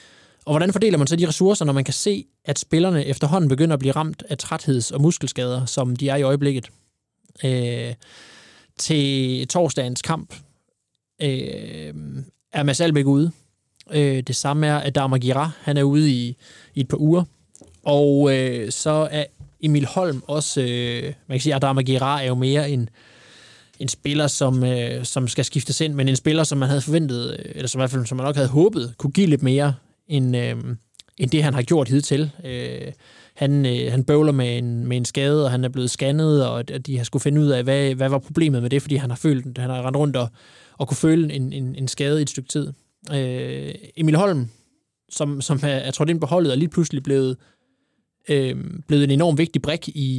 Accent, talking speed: native, 200 wpm